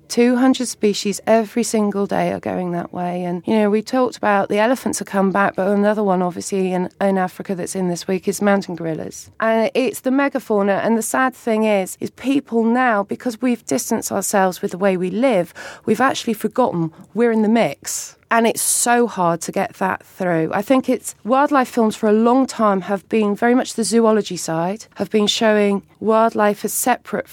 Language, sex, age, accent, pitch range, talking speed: English, female, 30-49, British, 185-225 Hz, 200 wpm